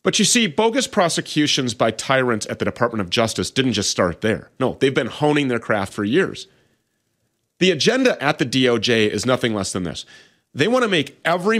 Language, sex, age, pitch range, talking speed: English, male, 30-49, 115-165 Hz, 200 wpm